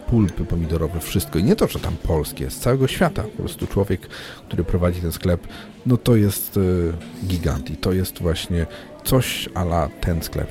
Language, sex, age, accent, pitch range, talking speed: Polish, male, 40-59, native, 75-95 Hz, 175 wpm